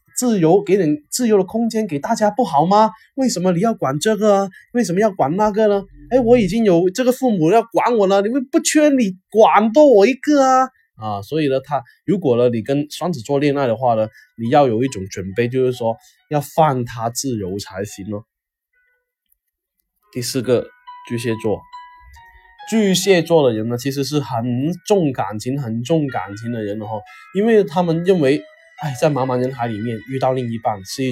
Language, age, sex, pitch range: Chinese, 20-39, male, 125-200 Hz